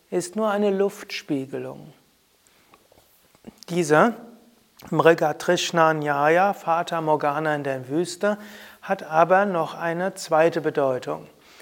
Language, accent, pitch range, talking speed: German, German, 150-190 Hz, 90 wpm